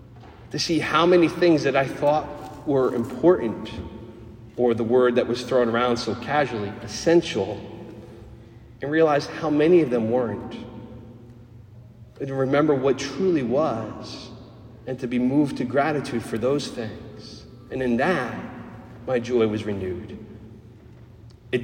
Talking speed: 140 wpm